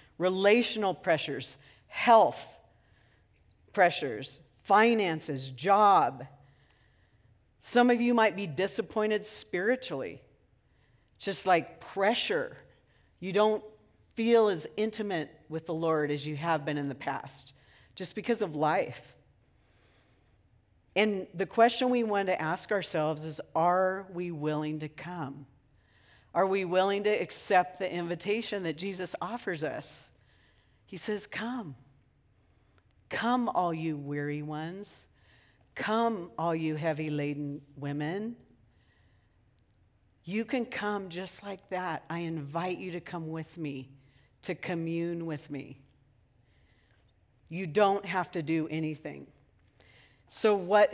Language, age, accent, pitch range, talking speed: English, 50-69, American, 135-195 Hz, 115 wpm